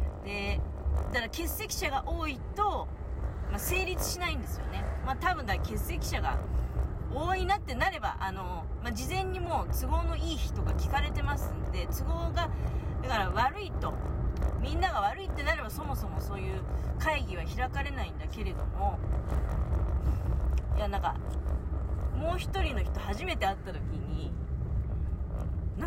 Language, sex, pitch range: Japanese, female, 65-85 Hz